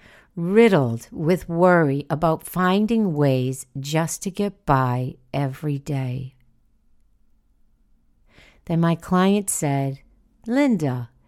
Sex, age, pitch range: female, 50-69, 135-195 Hz